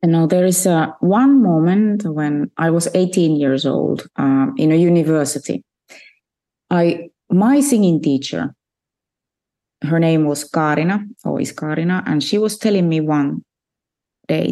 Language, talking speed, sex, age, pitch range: English, 140 wpm, female, 30-49, 155-215 Hz